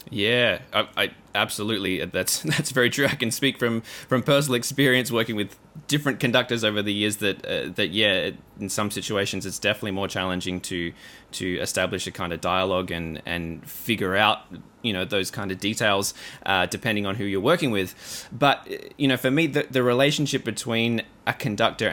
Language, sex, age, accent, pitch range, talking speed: English, male, 20-39, Australian, 95-120 Hz, 185 wpm